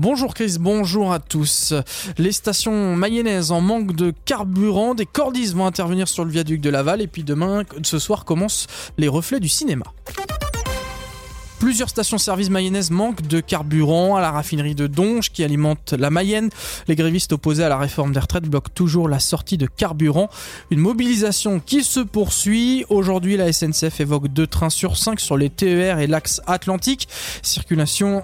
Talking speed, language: 170 wpm, French